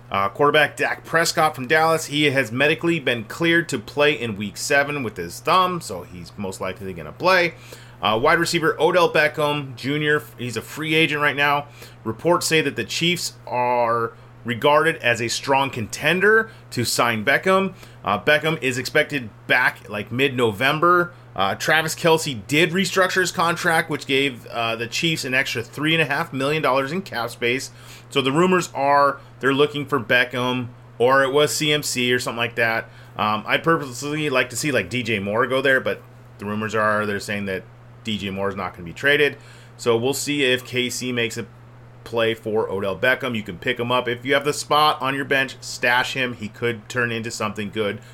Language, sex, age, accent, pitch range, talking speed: English, male, 30-49, American, 115-150 Hz, 185 wpm